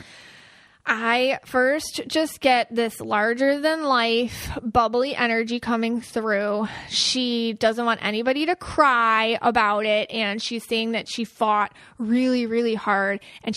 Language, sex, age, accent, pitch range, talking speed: English, female, 20-39, American, 205-240 Hz, 125 wpm